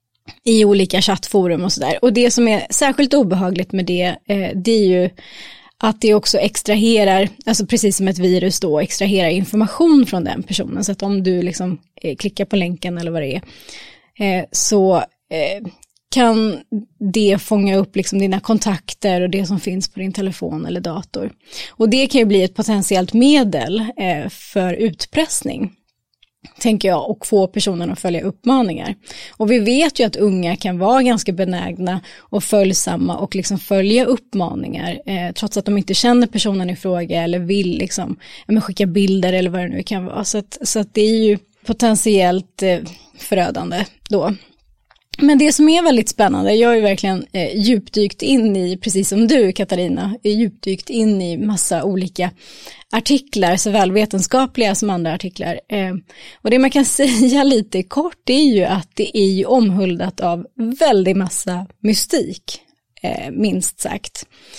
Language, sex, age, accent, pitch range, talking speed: English, female, 20-39, Swedish, 185-225 Hz, 165 wpm